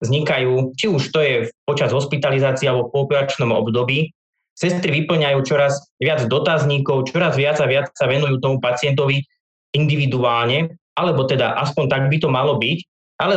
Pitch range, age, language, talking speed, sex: 130-155 Hz, 20-39, Slovak, 155 wpm, male